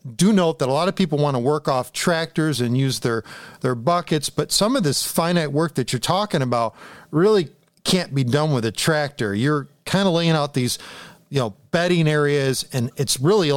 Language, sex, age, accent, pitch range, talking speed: English, male, 40-59, American, 130-170 Hz, 210 wpm